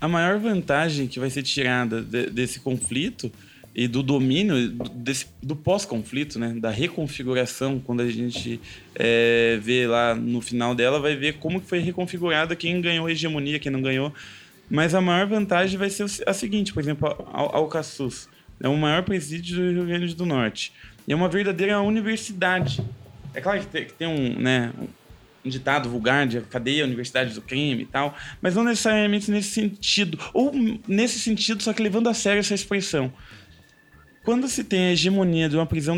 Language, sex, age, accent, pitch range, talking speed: Portuguese, male, 20-39, Brazilian, 125-180 Hz, 180 wpm